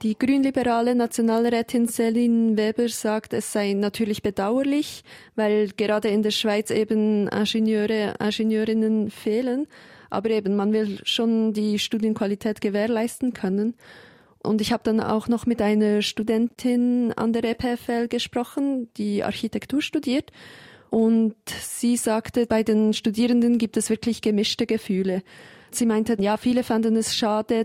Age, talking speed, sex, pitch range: 20-39, 135 wpm, female, 210-235 Hz